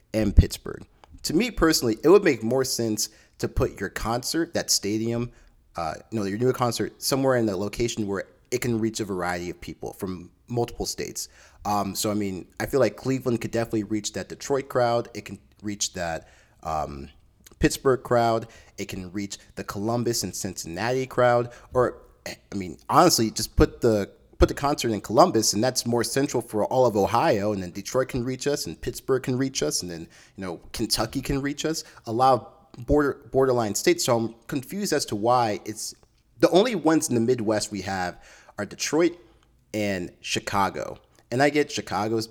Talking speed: 190 wpm